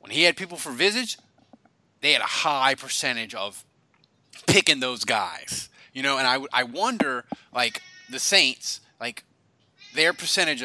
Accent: American